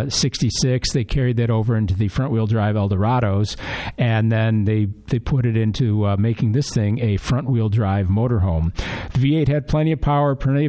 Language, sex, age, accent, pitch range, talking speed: English, male, 50-69, American, 105-140 Hz, 170 wpm